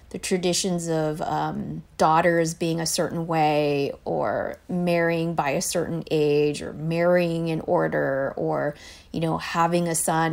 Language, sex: English, female